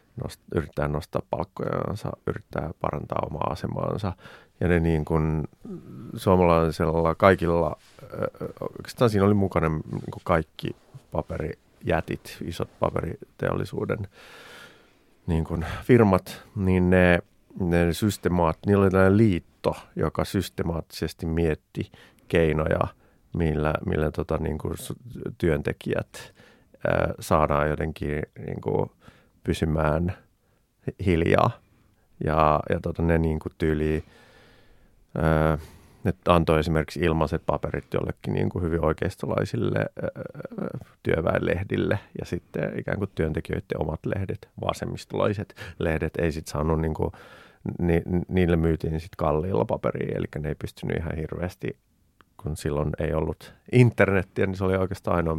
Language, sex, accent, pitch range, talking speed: Finnish, male, native, 80-95 Hz, 115 wpm